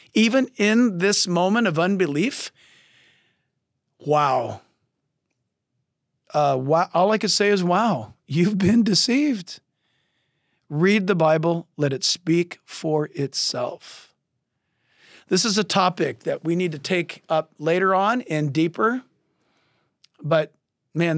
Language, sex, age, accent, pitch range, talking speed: English, male, 50-69, American, 160-205 Hz, 115 wpm